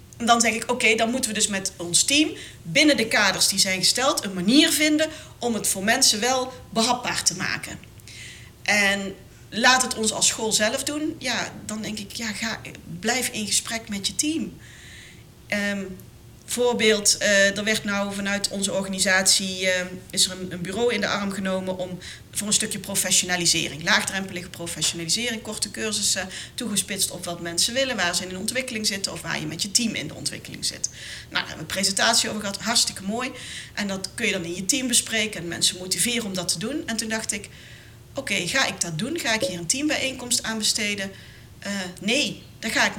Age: 40-59